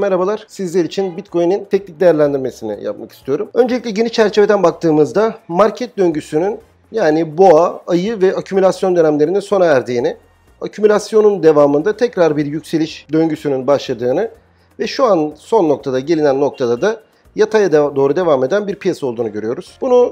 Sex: male